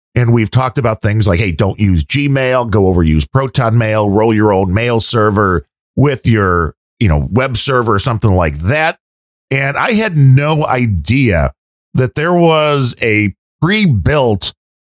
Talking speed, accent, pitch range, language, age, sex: 160 wpm, American, 95-140 Hz, English, 40-59, male